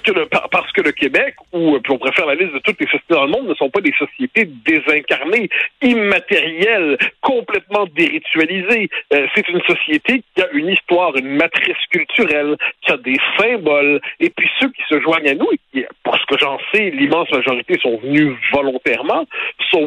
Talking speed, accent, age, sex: 190 wpm, French, 60-79, male